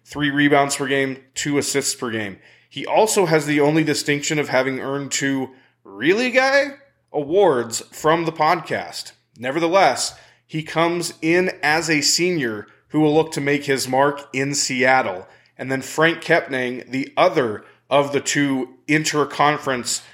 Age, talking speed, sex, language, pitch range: 20-39, 150 wpm, male, English, 130-155 Hz